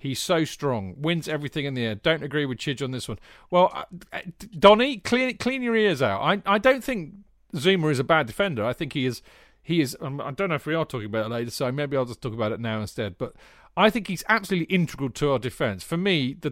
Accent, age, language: British, 40-59, English